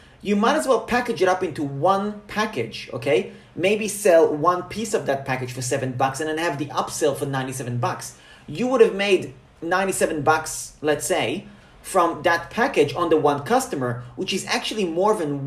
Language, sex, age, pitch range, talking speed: English, male, 30-49, 140-195 Hz, 190 wpm